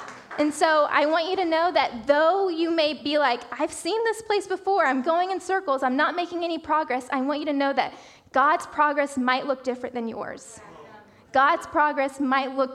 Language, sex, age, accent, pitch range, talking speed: English, female, 10-29, American, 275-365 Hz, 205 wpm